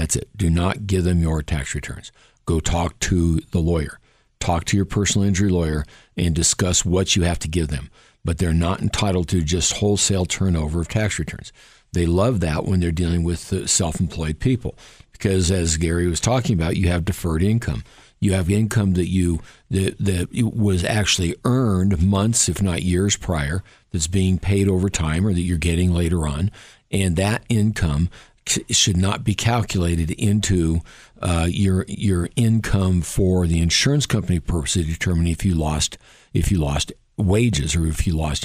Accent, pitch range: American, 85-105 Hz